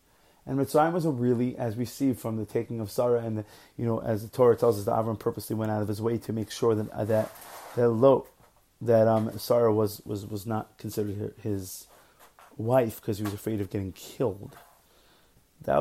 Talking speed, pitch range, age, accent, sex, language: 210 wpm, 105-125 Hz, 30-49, American, male, English